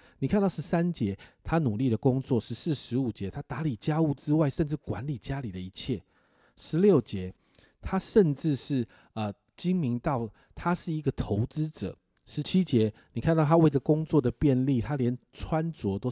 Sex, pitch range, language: male, 115-160 Hz, Chinese